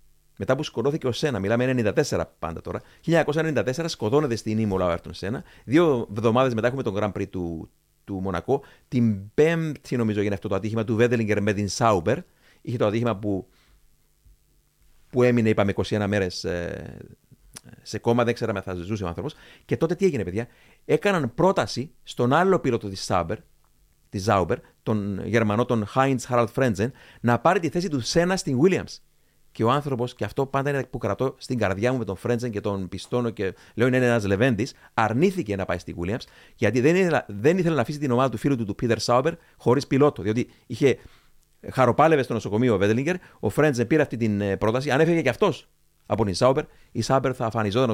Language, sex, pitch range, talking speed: Greek, male, 105-135 Hz, 185 wpm